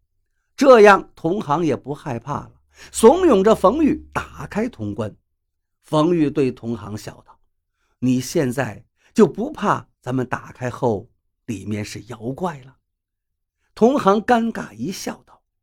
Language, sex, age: Chinese, male, 50-69